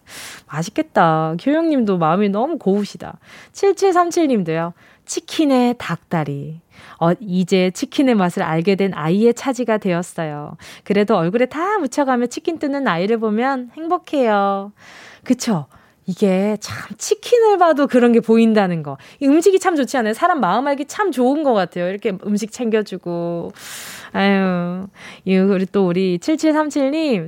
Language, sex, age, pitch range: Korean, female, 20-39, 190-295 Hz